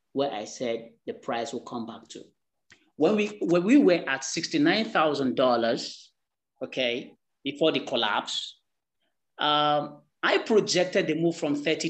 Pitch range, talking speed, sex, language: 140-210 Hz, 135 wpm, male, English